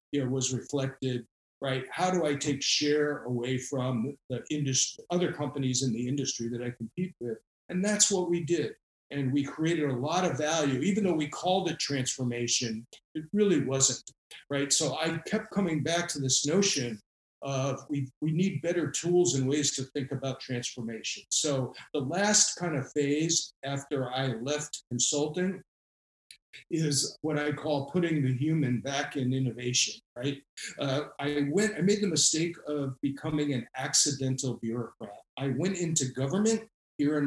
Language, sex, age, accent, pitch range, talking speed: English, male, 50-69, American, 130-160 Hz, 165 wpm